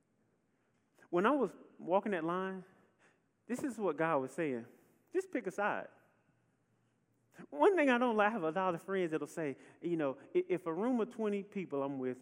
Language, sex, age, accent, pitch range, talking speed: English, male, 30-49, American, 140-200 Hz, 185 wpm